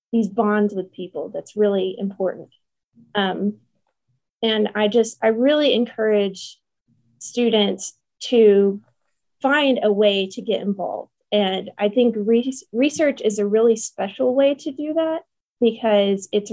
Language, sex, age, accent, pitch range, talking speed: English, female, 20-39, American, 200-245 Hz, 135 wpm